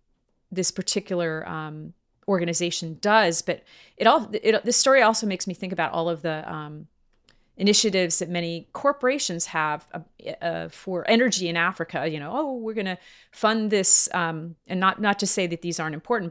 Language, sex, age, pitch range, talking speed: English, female, 30-49, 165-215 Hz, 180 wpm